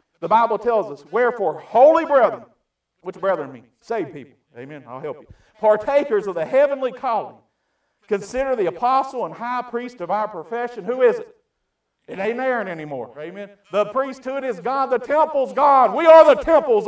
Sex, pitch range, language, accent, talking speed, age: male, 175-245 Hz, English, American, 175 wpm, 50-69